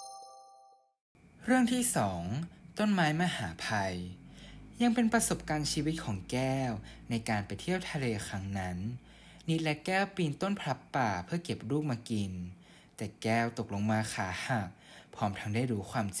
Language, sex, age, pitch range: Thai, male, 20-39, 105-150 Hz